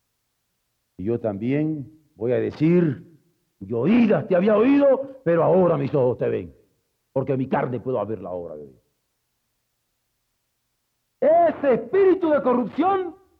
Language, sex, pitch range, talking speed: Spanish, male, 180-285 Hz, 120 wpm